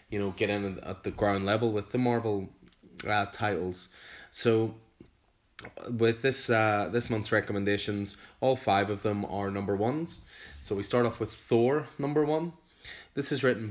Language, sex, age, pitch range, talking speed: English, male, 10-29, 100-115 Hz, 165 wpm